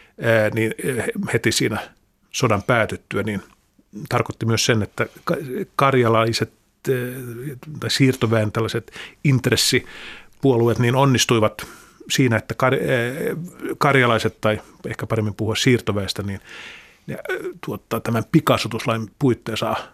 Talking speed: 90 wpm